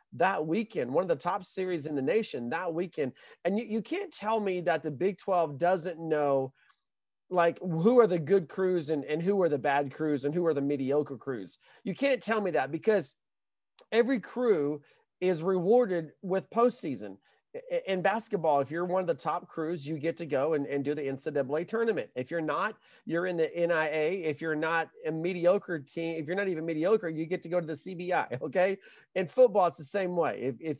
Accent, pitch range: American, 160-215 Hz